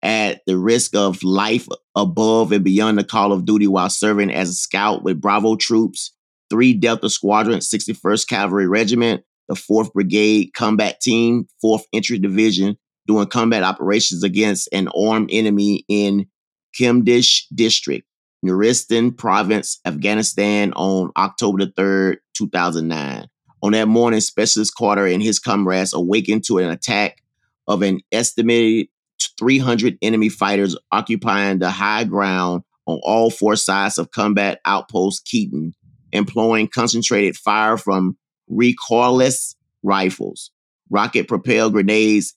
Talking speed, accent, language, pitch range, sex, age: 130 wpm, American, English, 100-115 Hz, male, 30-49